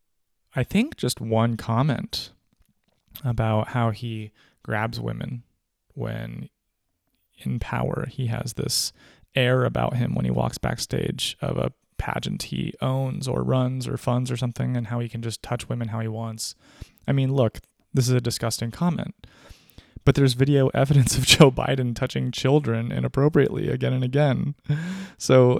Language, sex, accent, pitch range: English, male, American, 110-130 Hz